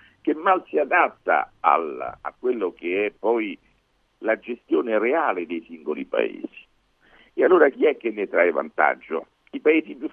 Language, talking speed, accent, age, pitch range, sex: Italian, 155 wpm, native, 50-69, 255-410 Hz, male